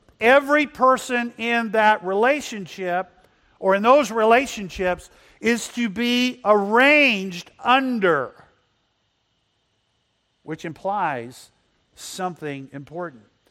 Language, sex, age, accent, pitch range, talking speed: English, male, 50-69, American, 150-225 Hz, 80 wpm